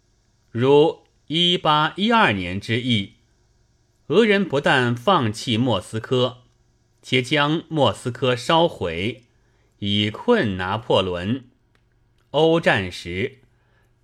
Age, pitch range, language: 30-49, 110-140 Hz, Chinese